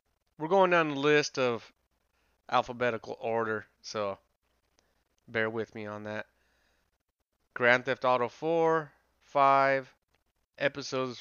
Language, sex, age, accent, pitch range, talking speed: English, male, 30-49, American, 105-130 Hz, 105 wpm